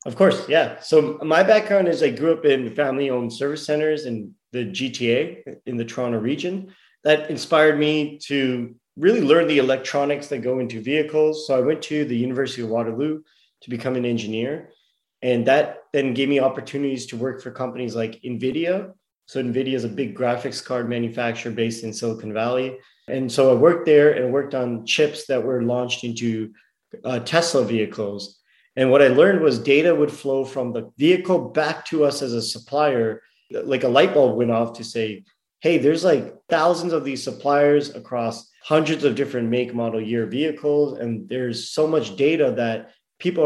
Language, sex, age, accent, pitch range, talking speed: English, male, 30-49, American, 120-150 Hz, 180 wpm